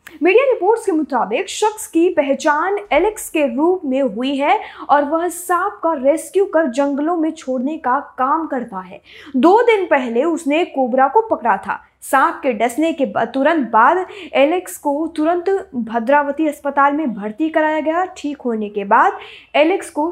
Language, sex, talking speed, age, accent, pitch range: Hindi, female, 165 wpm, 20-39, native, 265-350 Hz